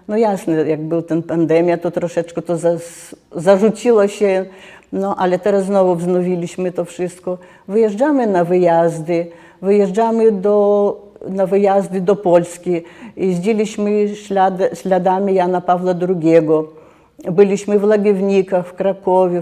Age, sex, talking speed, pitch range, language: 50-69, female, 115 wpm, 170-190 Hz, Polish